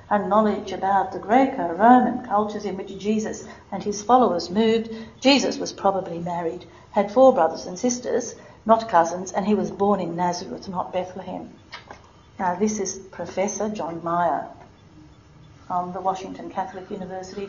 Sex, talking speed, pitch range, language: female, 150 wpm, 185-230 Hz, English